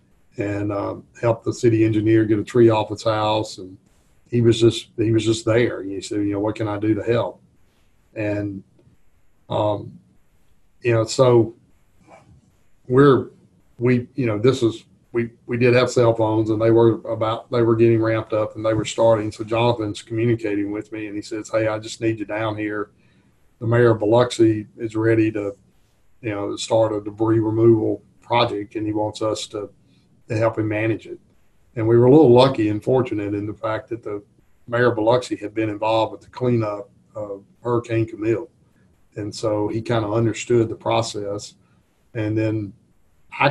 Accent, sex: American, male